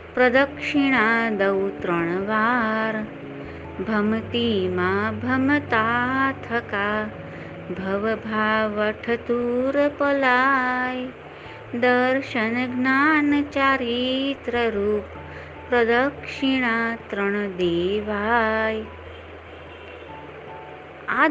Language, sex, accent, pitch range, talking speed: Gujarati, female, native, 195-250 Hz, 35 wpm